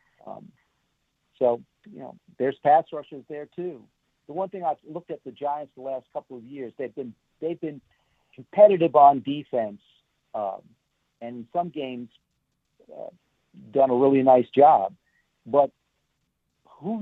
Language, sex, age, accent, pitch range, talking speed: English, male, 50-69, American, 120-150 Hz, 140 wpm